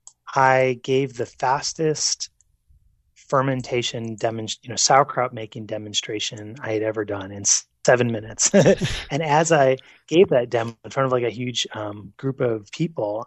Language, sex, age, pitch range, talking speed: English, male, 30-49, 110-135 Hz, 160 wpm